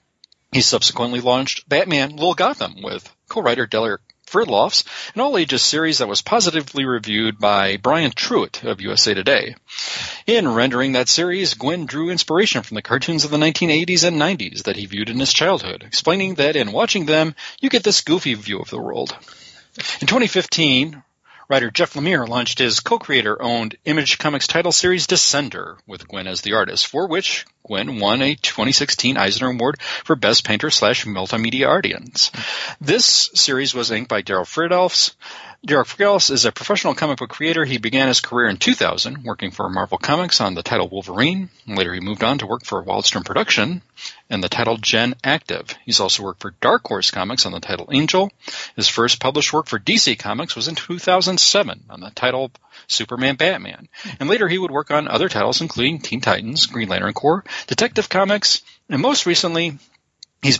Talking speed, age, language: 175 wpm, 40-59, English